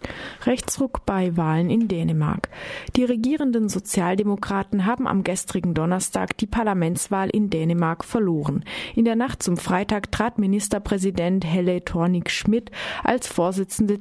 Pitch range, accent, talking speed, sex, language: 175-220 Hz, German, 120 wpm, female, German